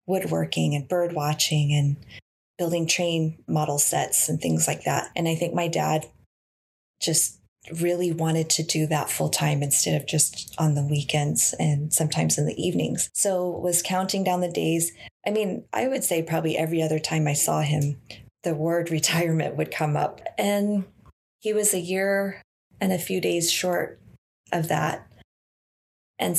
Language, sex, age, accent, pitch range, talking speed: English, female, 20-39, American, 150-180 Hz, 170 wpm